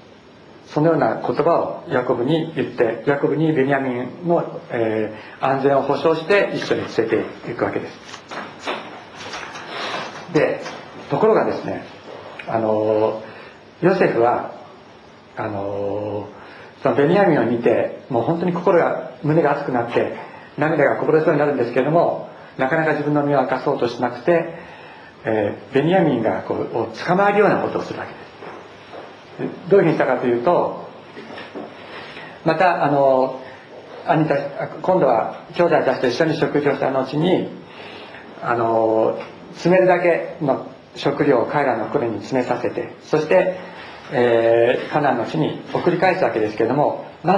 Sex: male